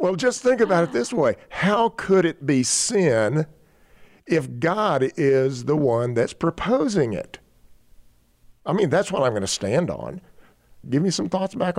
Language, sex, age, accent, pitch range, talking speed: English, male, 50-69, American, 110-150 Hz, 175 wpm